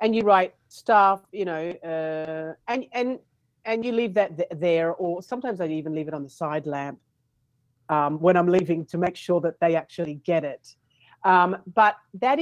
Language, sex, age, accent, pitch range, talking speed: English, female, 40-59, Australian, 155-210 Hz, 190 wpm